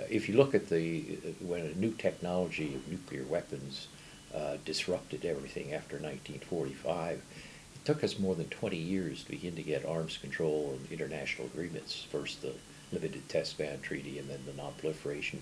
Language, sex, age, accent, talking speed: English, male, 60-79, American, 165 wpm